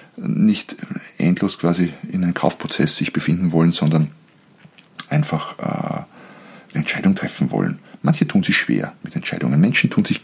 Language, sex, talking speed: German, male, 145 wpm